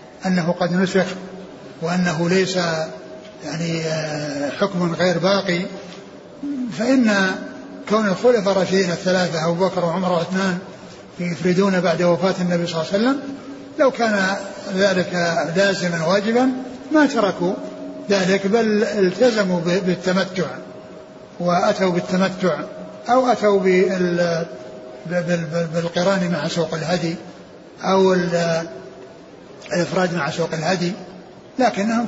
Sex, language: male, Arabic